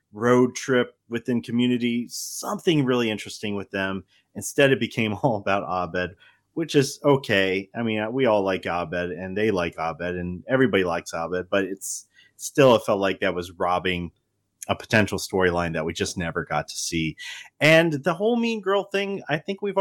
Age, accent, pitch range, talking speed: 30-49, American, 95-135 Hz, 180 wpm